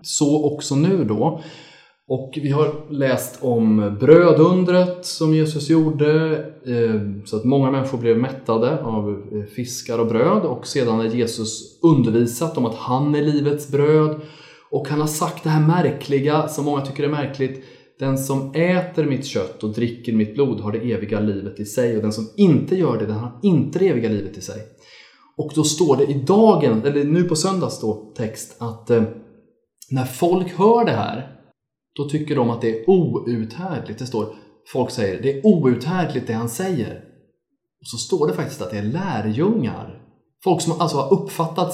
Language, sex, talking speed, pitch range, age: Swedish, male, 180 wpm, 115-160 Hz, 20-39